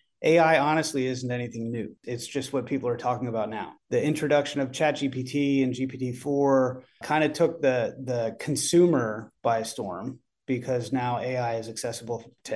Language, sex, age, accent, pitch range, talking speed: English, male, 30-49, American, 125-145 Hz, 160 wpm